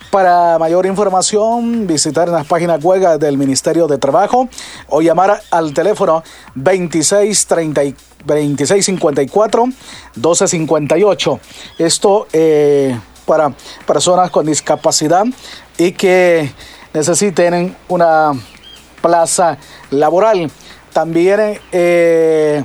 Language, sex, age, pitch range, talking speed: Spanish, male, 40-59, 160-185 Hz, 80 wpm